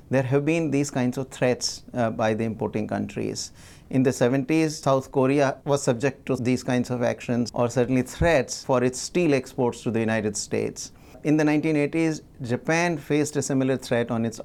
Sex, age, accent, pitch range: male, 60-79, Indian, 125-155 Hz